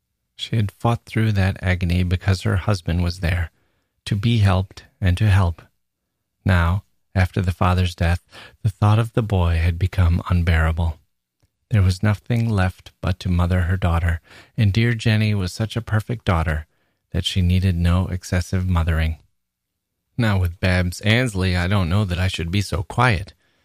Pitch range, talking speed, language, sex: 90-105 Hz, 165 wpm, English, male